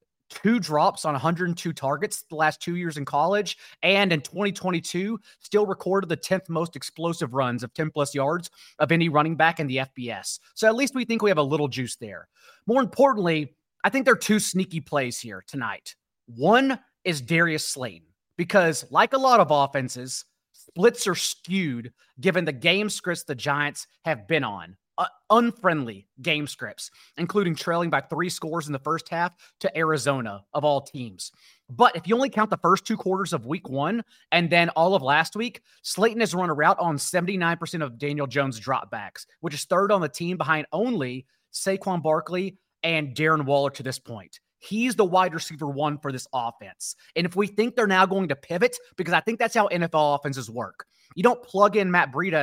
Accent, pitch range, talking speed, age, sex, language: American, 145-195 Hz, 195 wpm, 30-49, male, English